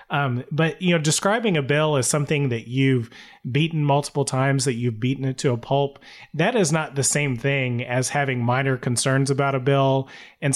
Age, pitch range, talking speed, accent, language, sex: 30-49, 125-155 Hz, 200 wpm, American, English, male